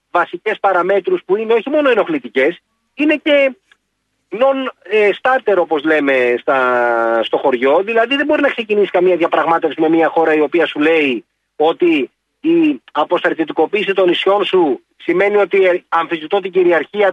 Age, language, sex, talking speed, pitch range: 30-49, Greek, male, 140 wpm, 175-270 Hz